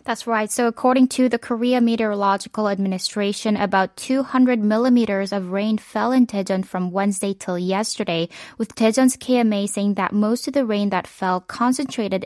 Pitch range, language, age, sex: 185-220 Hz, Korean, 20-39, female